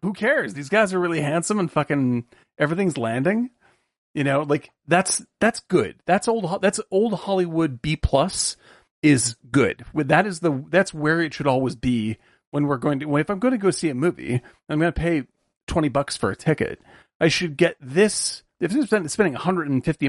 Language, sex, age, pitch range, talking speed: English, male, 40-59, 140-190 Hz, 195 wpm